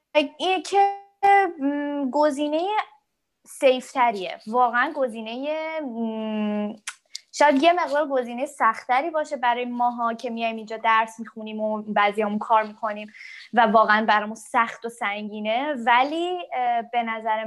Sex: female